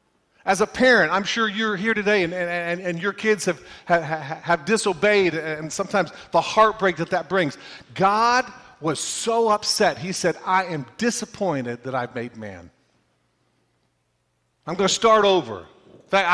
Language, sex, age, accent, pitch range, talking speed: English, male, 40-59, American, 185-235 Hz, 165 wpm